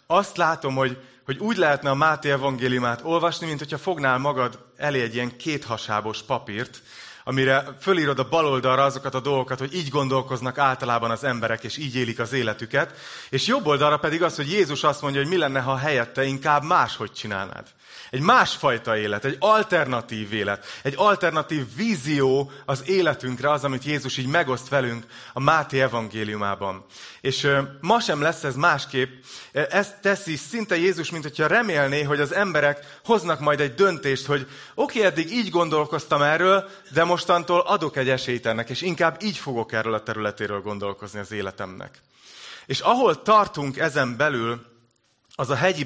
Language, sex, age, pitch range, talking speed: Hungarian, male, 30-49, 130-170 Hz, 165 wpm